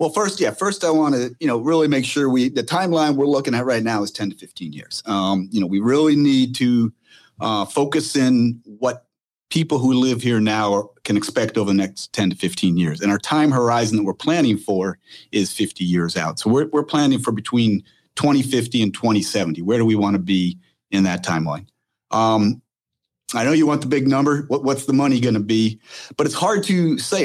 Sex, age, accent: male, 40-59, American